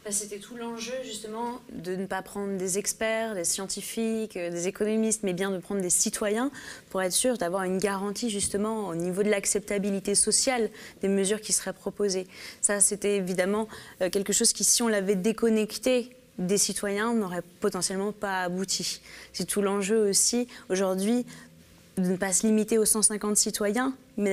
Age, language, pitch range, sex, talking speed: 20-39, French, 185-220 Hz, female, 165 wpm